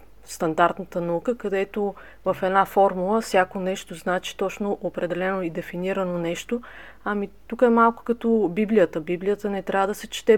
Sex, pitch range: female, 180-220 Hz